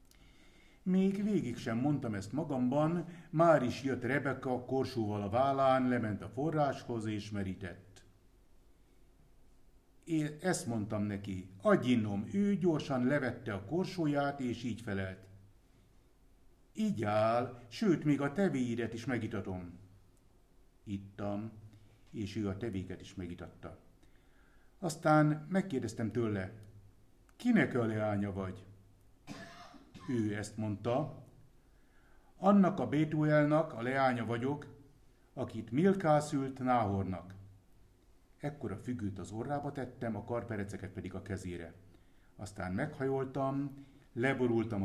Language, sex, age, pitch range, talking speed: Hungarian, male, 60-79, 100-135 Hz, 105 wpm